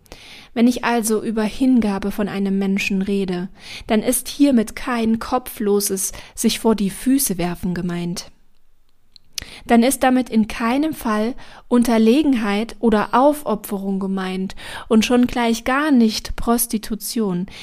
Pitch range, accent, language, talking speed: 195-230 Hz, German, German, 125 wpm